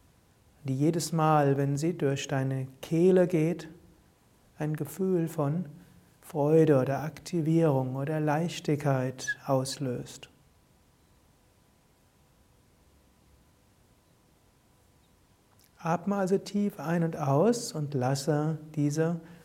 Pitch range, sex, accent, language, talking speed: 130-165 Hz, male, German, German, 85 wpm